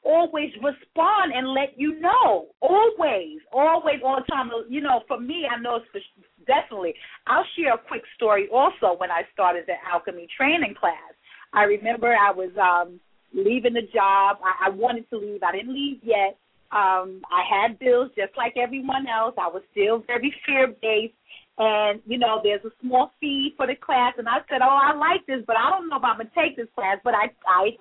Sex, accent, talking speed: female, American, 205 wpm